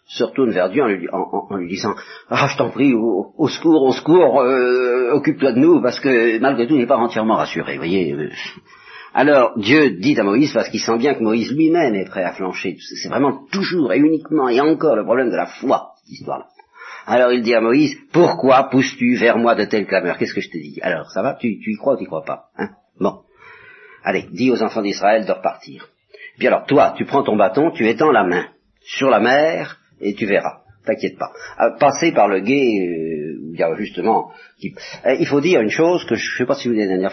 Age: 50-69